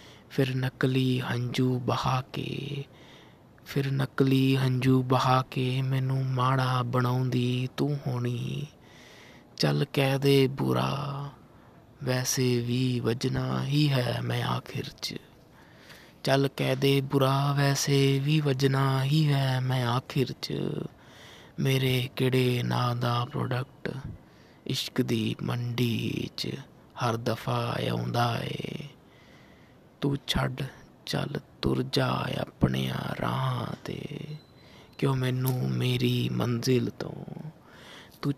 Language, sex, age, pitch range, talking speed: Punjabi, male, 20-39, 115-135 Hz, 95 wpm